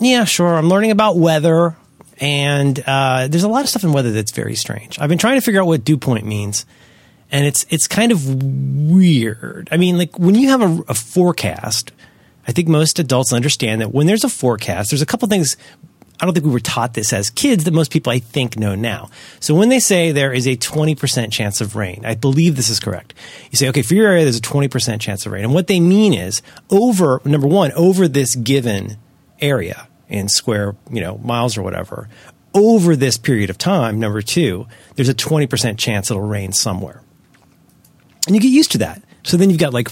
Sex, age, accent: male, 30-49, American